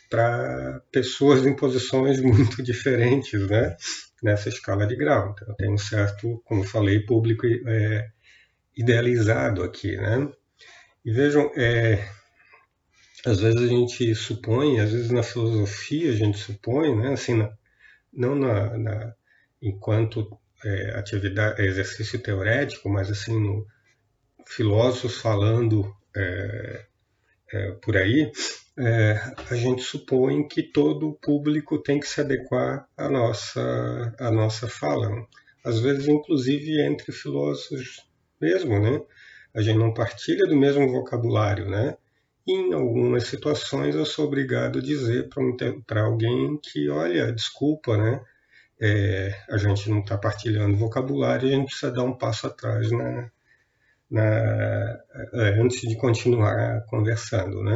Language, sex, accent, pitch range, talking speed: Portuguese, male, Brazilian, 105-130 Hz, 125 wpm